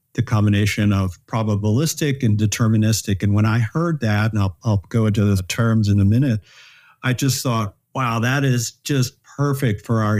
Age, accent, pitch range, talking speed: 50-69, American, 105-130 Hz, 180 wpm